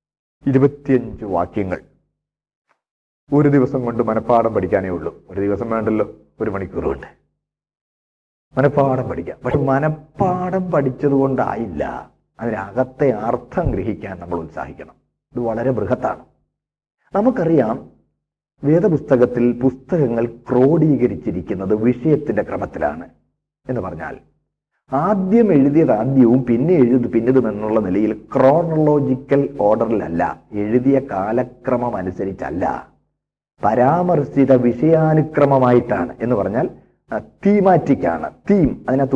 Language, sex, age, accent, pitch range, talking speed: Malayalam, male, 40-59, native, 120-145 Hz, 85 wpm